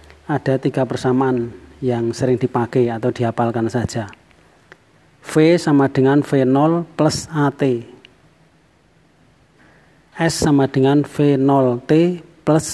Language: Indonesian